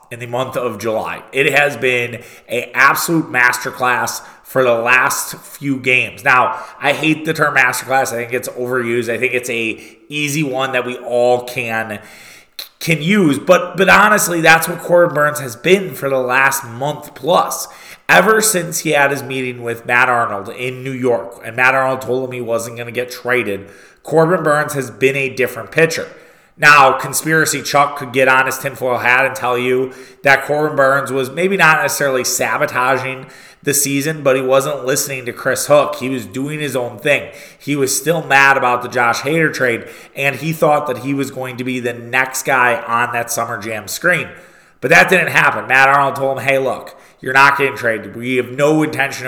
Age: 30-49